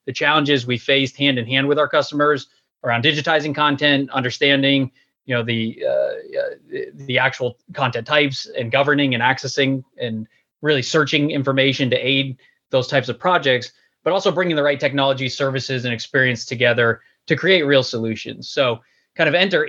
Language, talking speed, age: English, 160 wpm, 20-39